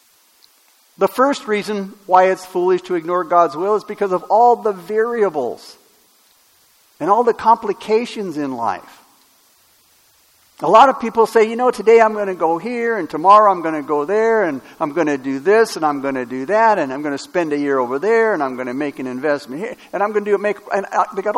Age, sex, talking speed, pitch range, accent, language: 60-79, male, 225 wpm, 150-215 Hz, American, English